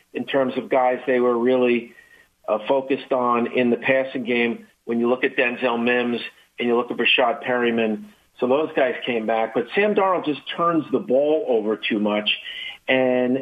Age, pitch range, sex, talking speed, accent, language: 50-69, 120-140 Hz, male, 190 wpm, American, English